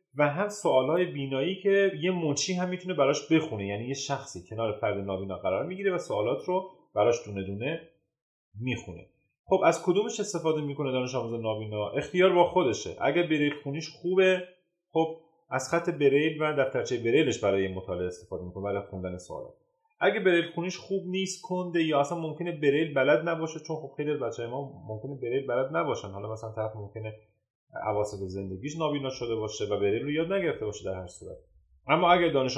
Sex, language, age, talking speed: male, Persian, 30-49, 175 wpm